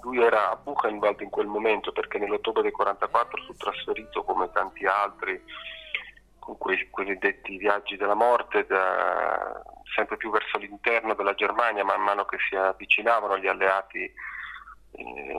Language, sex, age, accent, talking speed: Italian, male, 40-59, native, 150 wpm